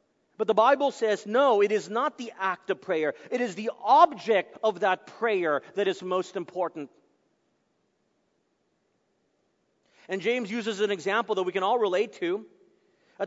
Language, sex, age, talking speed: English, male, 40-59, 160 wpm